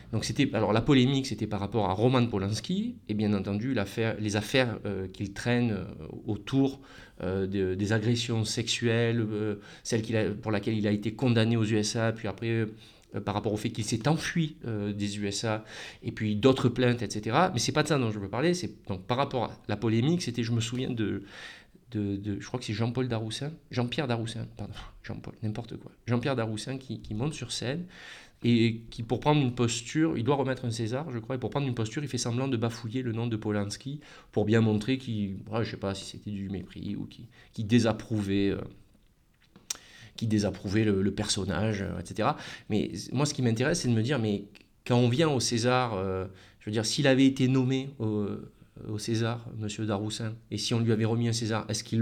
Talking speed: 215 wpm